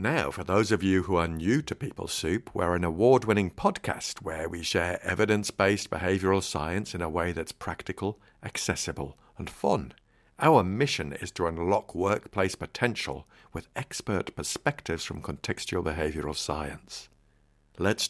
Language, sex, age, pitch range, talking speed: English, male, 50-69, 90-120 Hz, 145 wpm